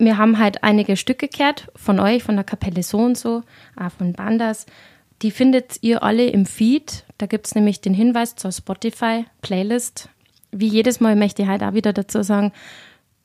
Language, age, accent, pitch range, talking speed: German, 20-39, German, 195-225 Hz, 185 wpm